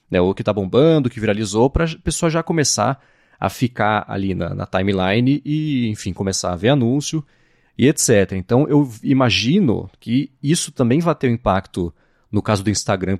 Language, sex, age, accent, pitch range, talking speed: Portuguese, male, 30-49, Brazilian, 105-150 Hz, 180 wpm